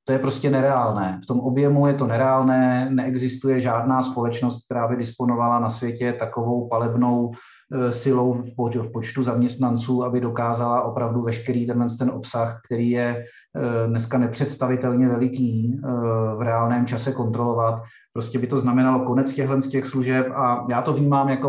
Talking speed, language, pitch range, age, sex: 145 wpm, Czech, 115-125 Hz, 30-49, male